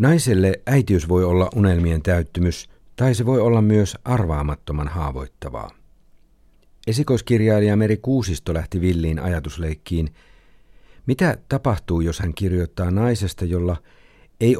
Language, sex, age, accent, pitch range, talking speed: Finnish, male, 50-69, native, 85-105 Hz, 110 wpm